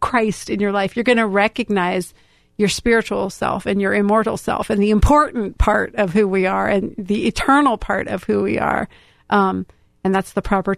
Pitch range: 185-215 Hz